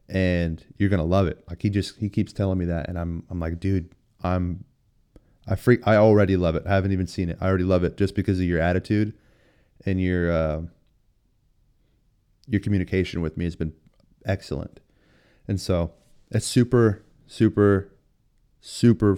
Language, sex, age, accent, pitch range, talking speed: English, male, 30-49, American, 90-110 Hz, 170 wpm